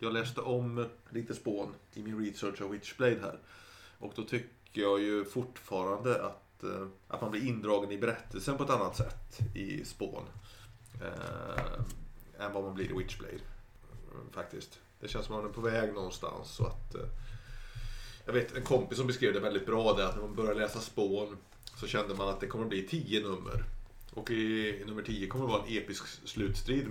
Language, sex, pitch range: Swedish, male, 100-115 Hz